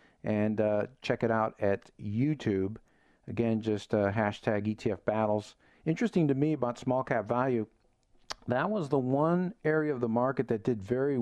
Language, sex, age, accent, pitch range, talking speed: English, male, 50-69, American, 110-125 Hz, 165 wpm